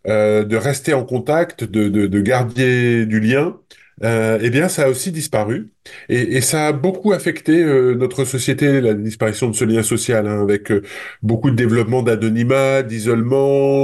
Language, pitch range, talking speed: French, 110-145 Hz, 180 wpm